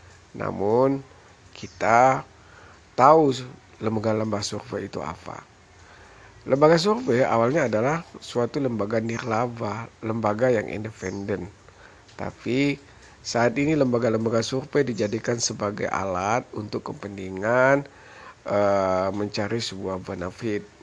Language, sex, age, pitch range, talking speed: Indonesian, male, 50-69, 105-135 Hz, 90 wpm